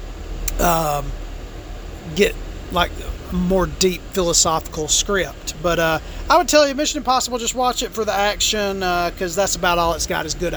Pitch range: 150-225 Hz